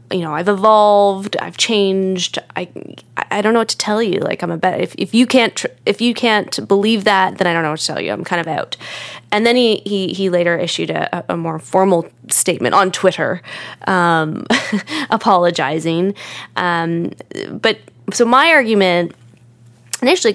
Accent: American